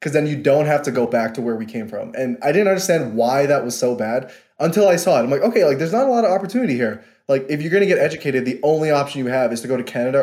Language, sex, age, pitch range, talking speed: English, male, 20-39, 125-155 Hz, 315 wpm